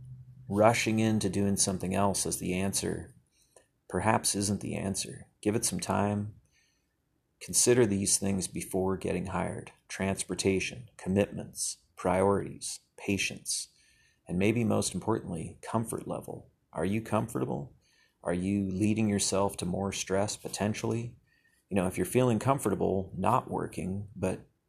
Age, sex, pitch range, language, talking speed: 30-49, male, 95-110 Hz, English, 125 wpm